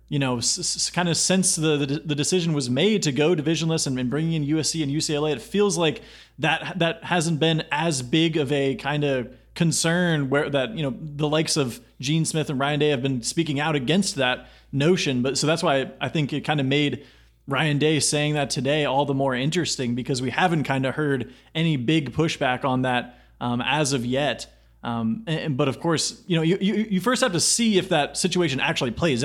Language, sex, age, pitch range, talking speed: English, male, 30-49, 135-165 Hz, 215 wpm